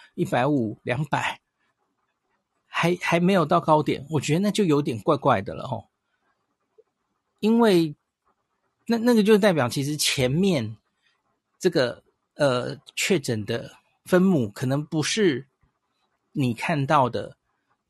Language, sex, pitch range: Chinese, male, 120-165 Hz